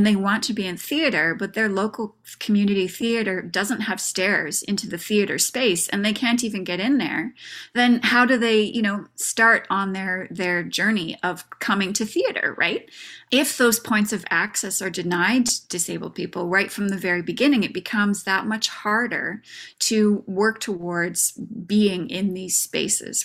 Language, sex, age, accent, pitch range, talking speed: English, female, 20-39, American, 185-225 Hz, 175 wpm